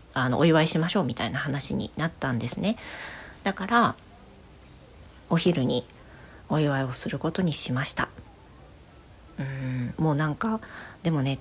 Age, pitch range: 40-59, 140-215 Hz